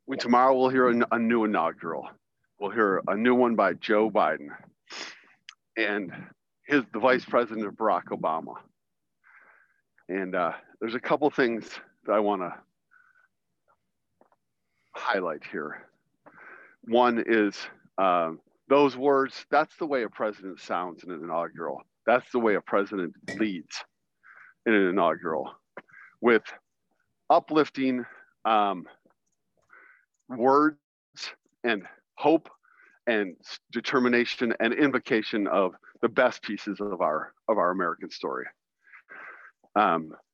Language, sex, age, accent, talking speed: English, male, 50-69, American, 120 wpm